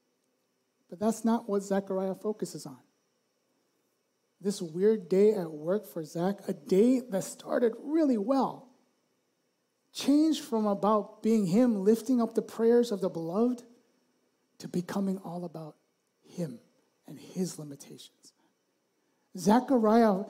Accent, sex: American, male